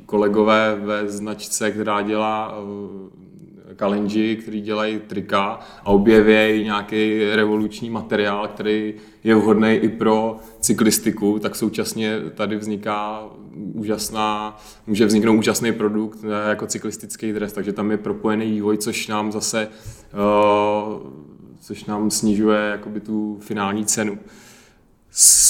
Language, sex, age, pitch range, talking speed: Czech, male, 30-49, 105-110 Hz, 120 wpm